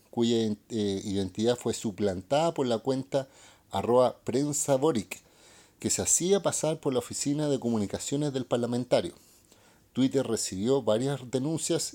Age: 40-59